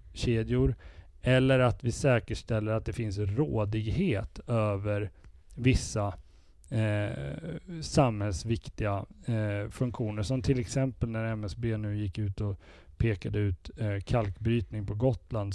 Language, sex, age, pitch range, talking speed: Swedish, male, 30-49, 105-120 Hz, 105 wpm